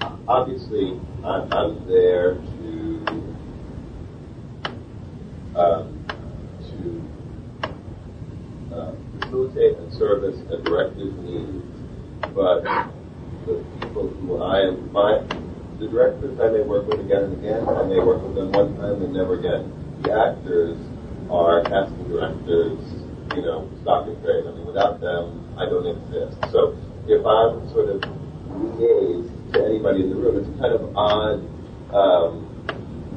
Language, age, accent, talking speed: English, 40-59, American, 125 wpm